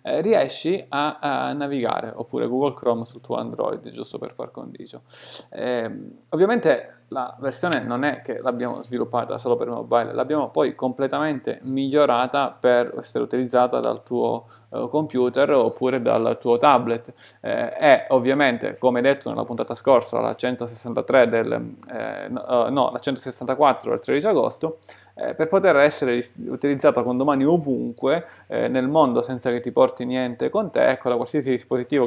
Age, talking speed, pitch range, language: 20-39, 140 wpm, 125-145 Hz, Italian